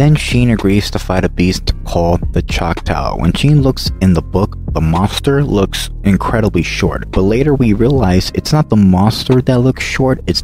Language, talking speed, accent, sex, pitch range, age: English, 190 wpm, American, male, 90-115 Hz, 20-39